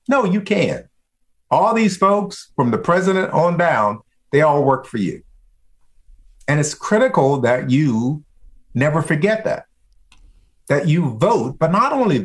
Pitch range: 125-185 Hz